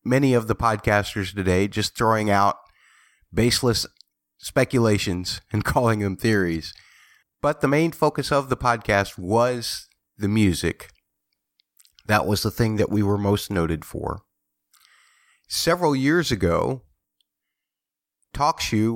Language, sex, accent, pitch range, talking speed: English, male, American, 95-125 Hz, 120 wpm